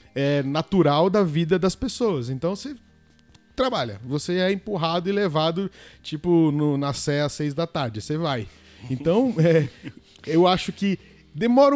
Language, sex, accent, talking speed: English, male, Brazilian, 150 wpm